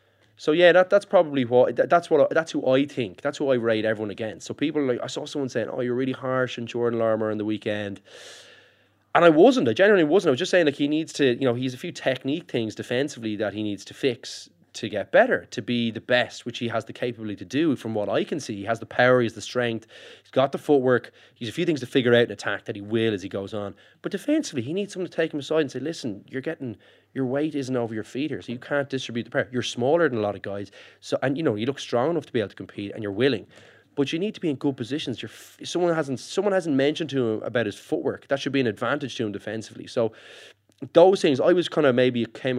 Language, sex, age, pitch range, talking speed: English, male, 20-39, 110-145 Hz, 280 wpm